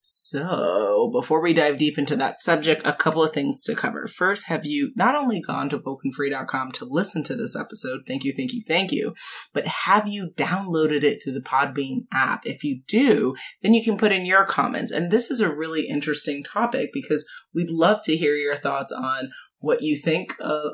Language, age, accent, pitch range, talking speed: English, 30-49, American, 145-195 Hz, 205 wpm